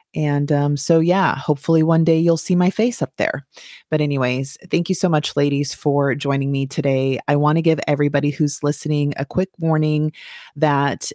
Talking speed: 190 wpm